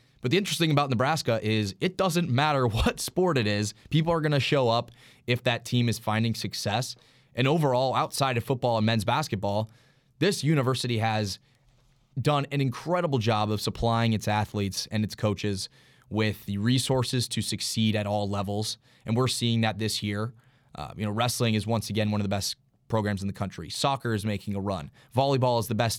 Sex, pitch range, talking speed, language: male, 105-130 Hz, 200 wpm, English